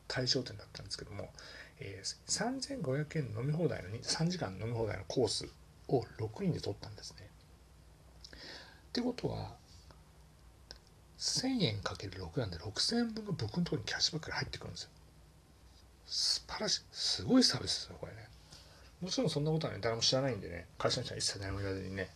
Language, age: Japanese, 40-59